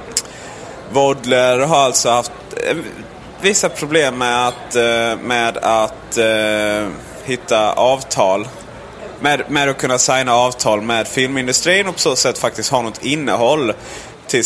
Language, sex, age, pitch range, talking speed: Swedish, male, 30-49, 120-155 Hz, 120 wpm